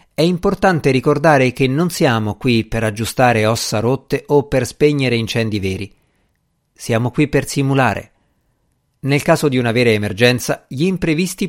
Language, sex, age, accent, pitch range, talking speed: Italian, male, 50-69, native, 115-160 Hz, 145 wpm